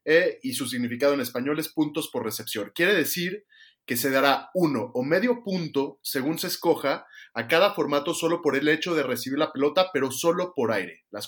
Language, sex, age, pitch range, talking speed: Spanish, male, 30-49, 120-170 Hz, 200 wpm